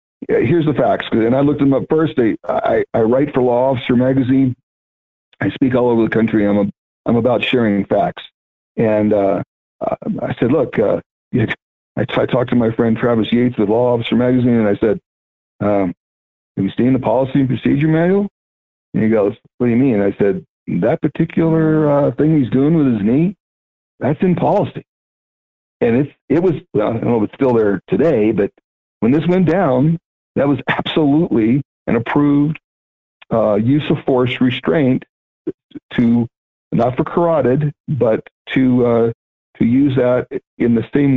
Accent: American